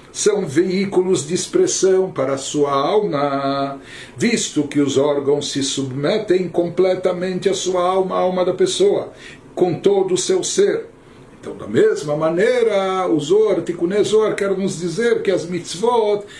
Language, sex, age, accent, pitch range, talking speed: Portuguese, male, 60-79, Brazilian, 150-205 Hz, 145 wpm